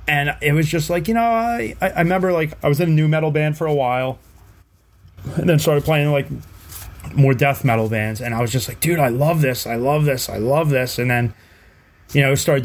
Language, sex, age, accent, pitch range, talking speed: English, male, 30-49, American, 110-150 Hz, 235 wpm